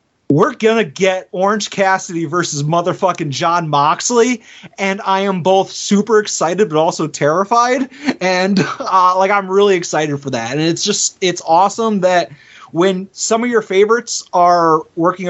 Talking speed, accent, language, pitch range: 155 wpm, American, English, 150-195 Hz